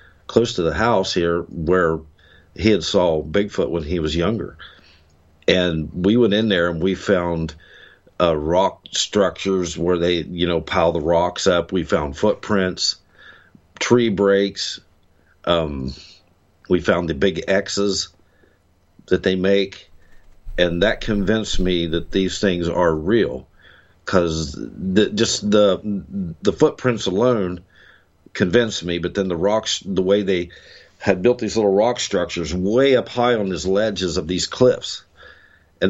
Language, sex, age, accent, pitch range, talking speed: English, male, 50-69, American, 85-105 Hz, 145 wpm